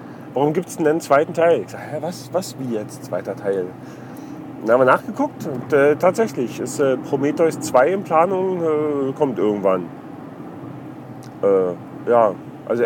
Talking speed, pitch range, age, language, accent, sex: 155 wpm, 145-175 Hz, 40-59, German, German, male